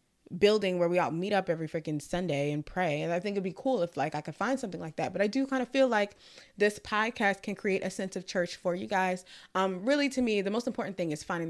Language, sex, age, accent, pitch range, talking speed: English, female, 20-39, American, 165-200 Hz, 275 wpm